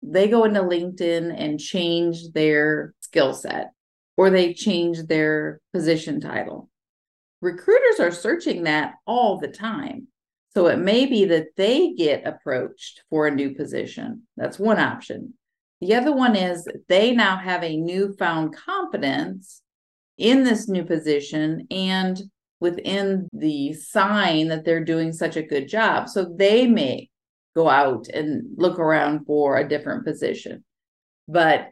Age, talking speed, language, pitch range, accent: 40-59, 140 wpm, English, 160-225 Hz, American